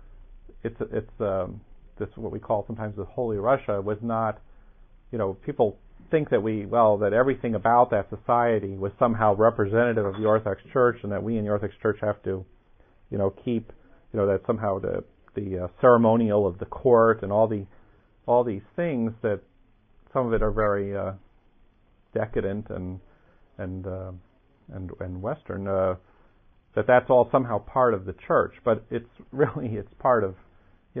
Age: 50-69